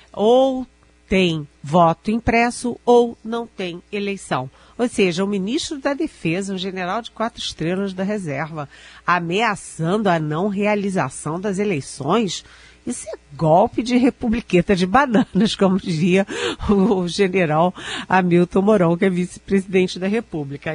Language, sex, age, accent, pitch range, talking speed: Portuguese, female, 50-69, Brazilian, 165-210 Hz, 130 wpm